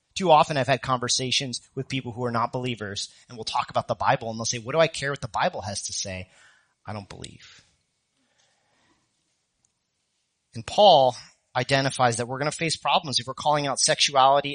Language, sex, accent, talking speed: English, male, American, 195 wpm